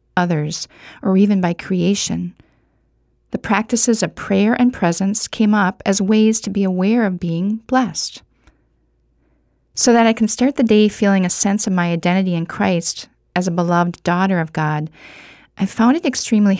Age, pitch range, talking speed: 40-59, 175-220 Hz, 165 wpm